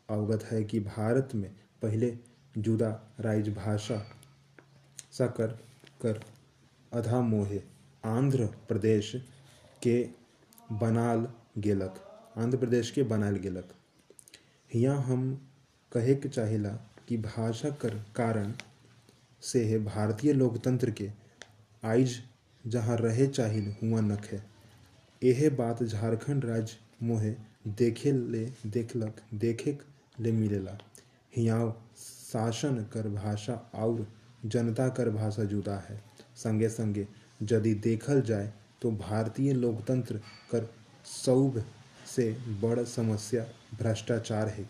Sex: male